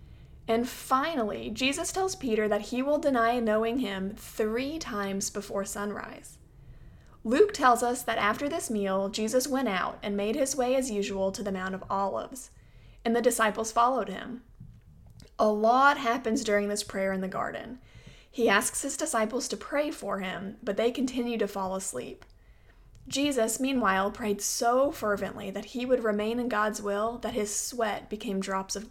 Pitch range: 205-250 Hz